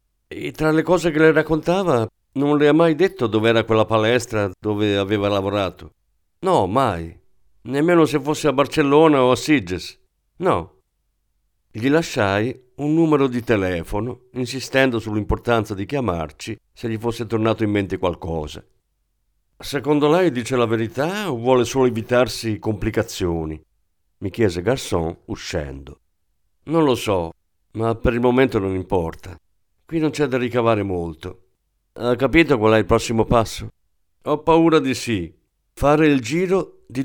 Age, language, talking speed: 50-69, Italian, 145 wpm